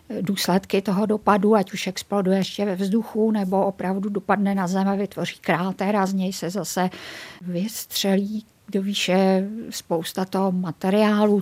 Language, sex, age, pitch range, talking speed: Czech, female, 50-69, 185-200 Hz, 145 wpm